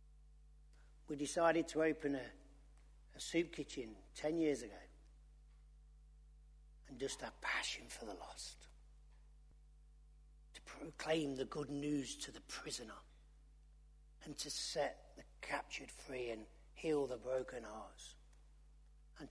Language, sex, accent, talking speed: English, male, British, 120 wpm